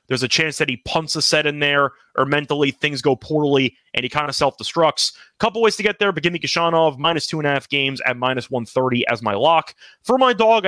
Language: English